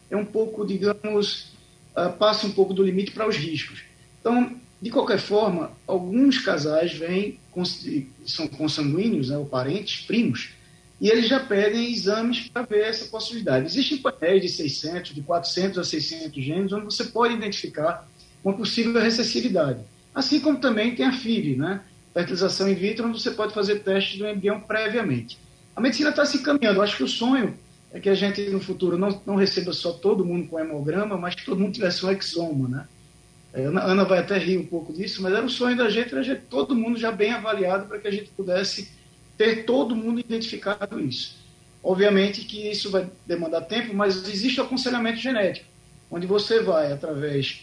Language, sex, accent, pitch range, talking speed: Portuguese, male, Brazilian, 170-220 Hz, 190 wpm